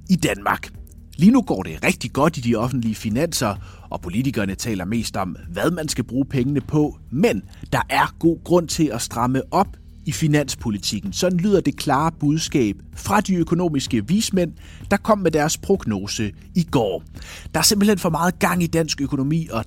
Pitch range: 105-160 Hz